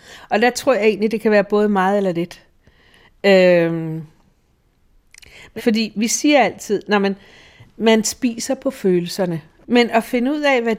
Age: 60-79